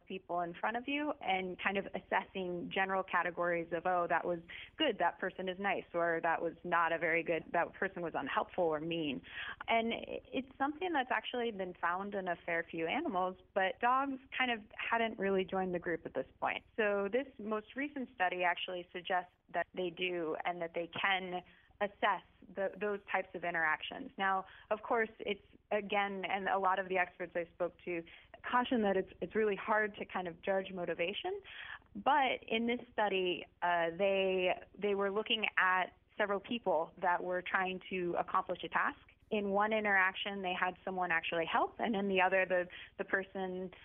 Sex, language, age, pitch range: female, English, 30-49, 175-210 Hz